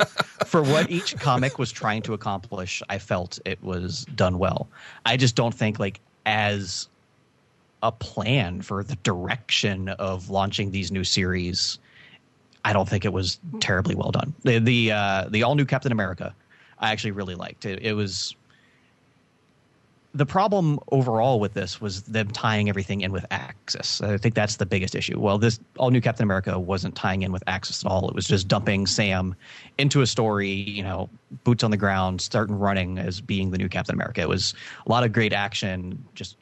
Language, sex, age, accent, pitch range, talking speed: English, male, 30-49, American, 95-120 Hz, 185 wpm